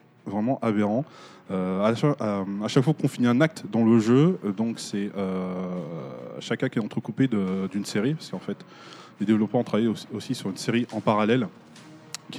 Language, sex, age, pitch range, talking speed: French, male, 20-39, 100-125 Hz, 175 wpm